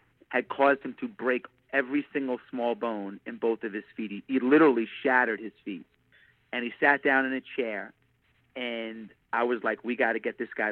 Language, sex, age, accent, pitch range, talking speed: English, male, 40-59, American, 115-135 Hz, 205 wpm